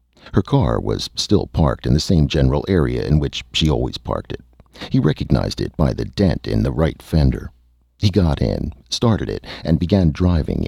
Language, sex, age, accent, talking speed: English, male, 60-79, American, 190 wpm